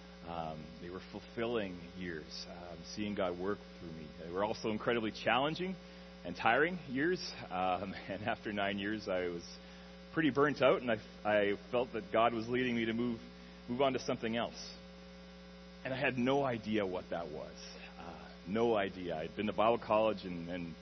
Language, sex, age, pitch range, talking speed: English, male, 30-49, 75-115 Hz, 180 wpm